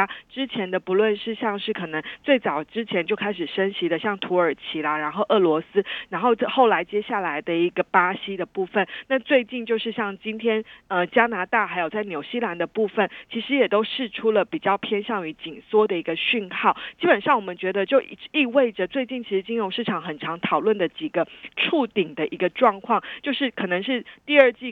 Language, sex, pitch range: Chinese, female, 185-240 Hz